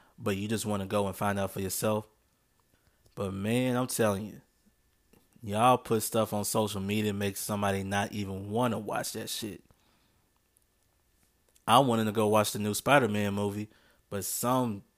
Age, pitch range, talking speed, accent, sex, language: 20-39, 100-120 Hz, 170 wpm, American, male, English